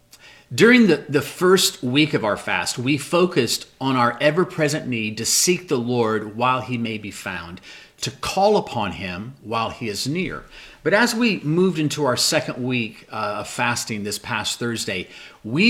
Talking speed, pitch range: 175 wpm, 120-170 Hz